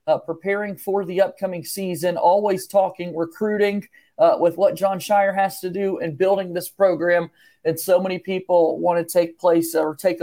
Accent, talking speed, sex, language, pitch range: American, 180 wpm, male, English, 165-200 Hz